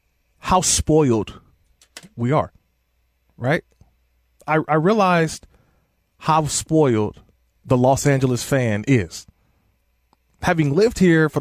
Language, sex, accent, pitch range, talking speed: English, male, American, 100-155 Hz, 100 wpm